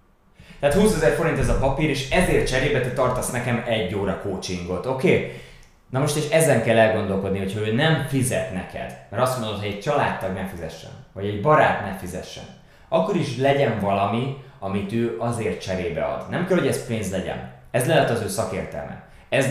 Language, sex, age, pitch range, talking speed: Hungarian, male, 20-39, 95-130 Hz, 195 wpm